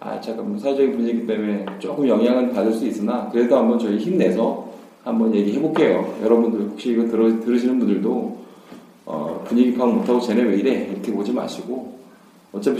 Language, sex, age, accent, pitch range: Korean, male, 20-39, native, 105-150 Hz